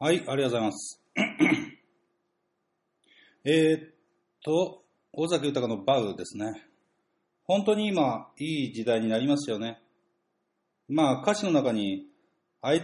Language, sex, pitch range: Japanese, male, 115-165 Hz